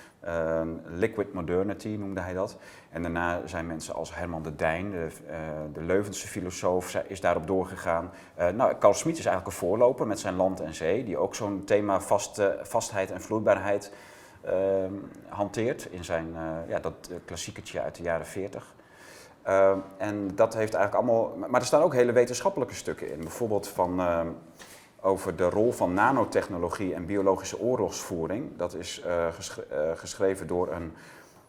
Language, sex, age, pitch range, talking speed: Dutch, male, 30-49, 85-100 Hz, 155 wpm